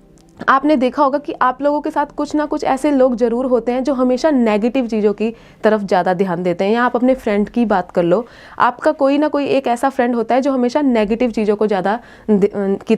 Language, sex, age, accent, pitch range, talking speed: Hindi, female, 20-39, native, 205-270 Hz, 230 wpm